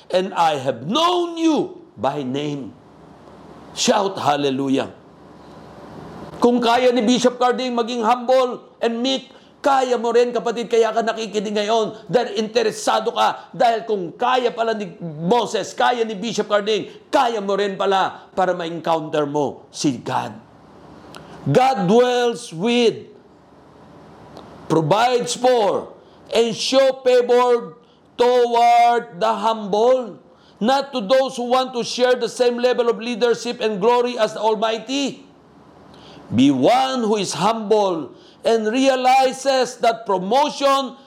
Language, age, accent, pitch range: Filipino, 50-69, native, 195-250 Hz